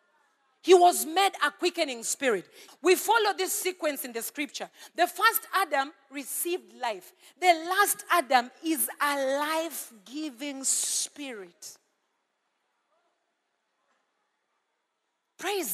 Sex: female